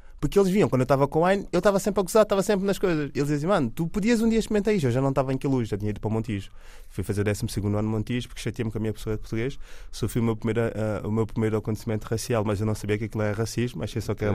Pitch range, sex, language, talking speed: 105-140 Hz, male, Portuguese, 320 wpm